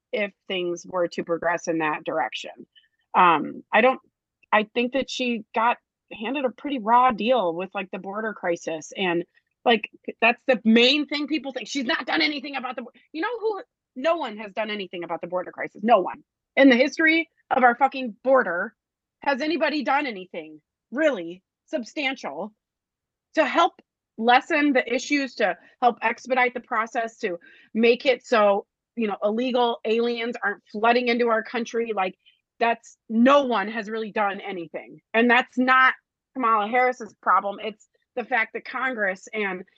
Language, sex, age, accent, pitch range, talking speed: English, female, 30-49, American, 215-270 Hz, 165 wpm